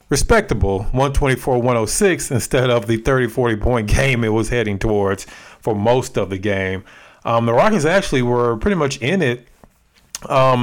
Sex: male